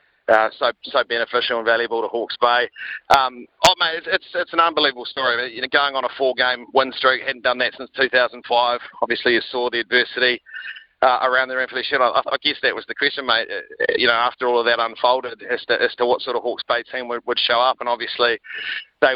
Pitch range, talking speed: 120-130 Hz, 240 wpm